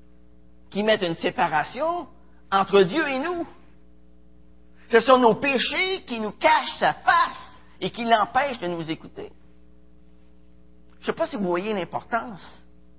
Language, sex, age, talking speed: French, male, 50-69, 145 wpm